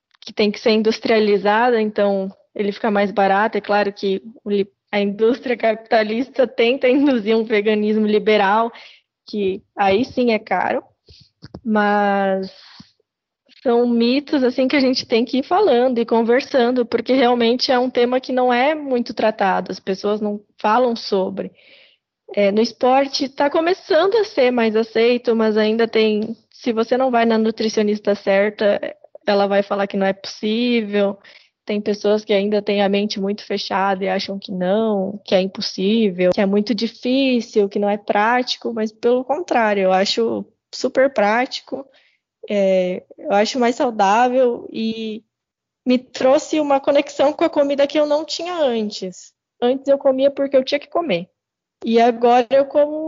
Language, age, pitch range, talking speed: Portuguese, 10-29, 205-260 Hz, 160 wpm